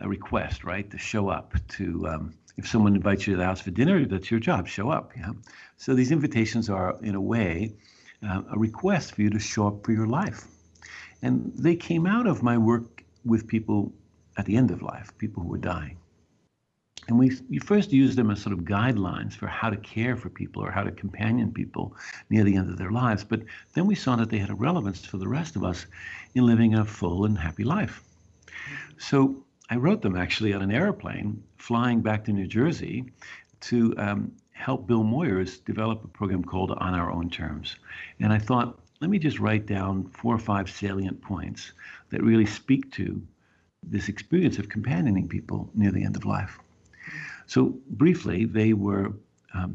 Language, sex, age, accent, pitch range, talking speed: English, male, 60-79, American, 95-115 Hz, 200 wpm